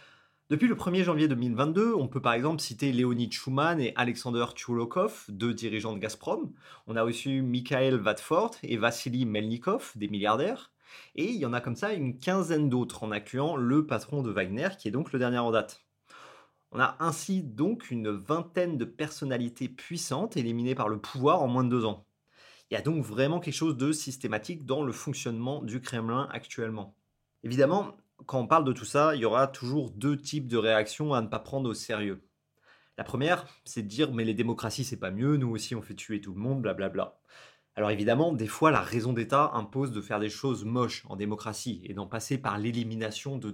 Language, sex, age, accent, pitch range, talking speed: French, male, 30-49, French, 110-140 Hz, 205 wpm